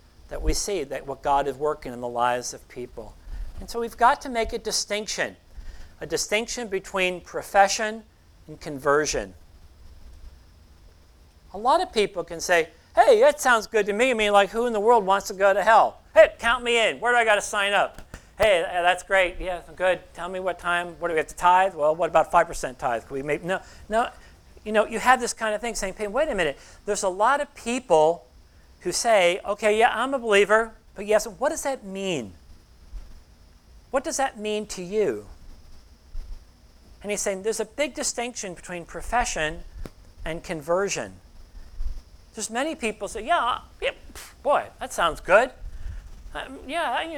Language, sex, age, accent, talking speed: English, male, 40-59, American, 190 wpm